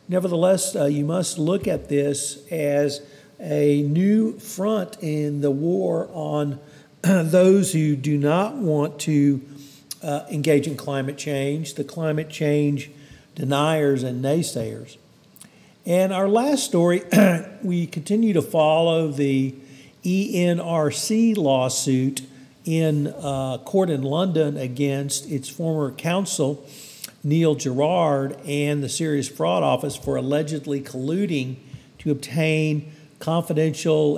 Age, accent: 50-69, American